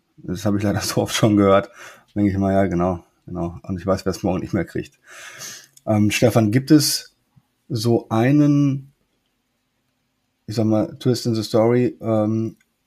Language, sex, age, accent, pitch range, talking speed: German, male, 20-39, German, 105-125 Hz, 175 wpm